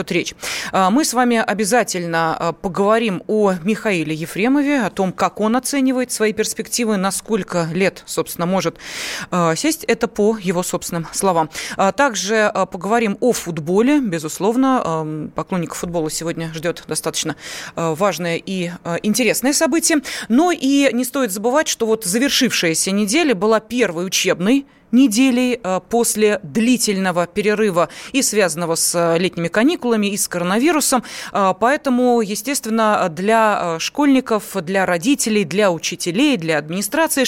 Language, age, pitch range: Russian, 20-39, 180-245 Hz